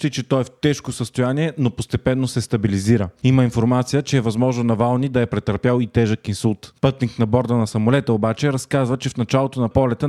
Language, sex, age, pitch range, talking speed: Bulgarian, male, 30-49, 115-135 Hz, 200 wpm